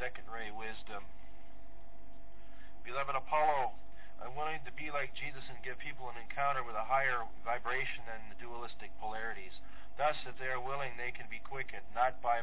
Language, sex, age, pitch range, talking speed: English, male, 40-59, 115-135 Hz, 170 wpm